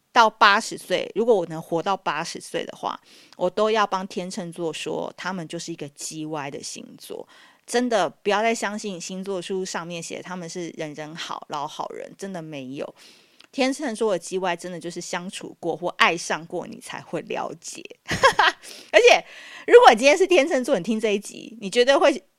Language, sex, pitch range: Chinese, female, 180-250 Hz